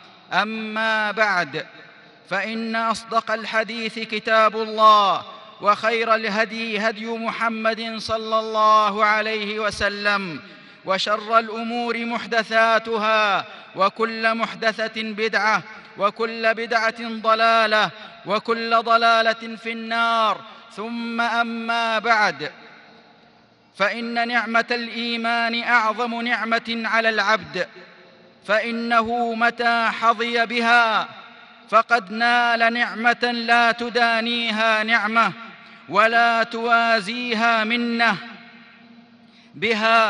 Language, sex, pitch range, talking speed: Arabic, male, 215-230 Hz, 80 wpm